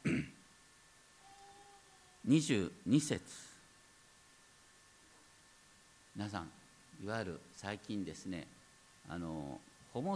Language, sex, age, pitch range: Japanese, male, 50-69, 90-155 Hz